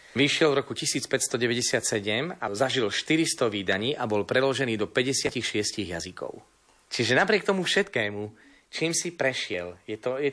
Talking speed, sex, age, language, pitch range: 140 wpm, male, 30-49, Slovak, 110-140 Hz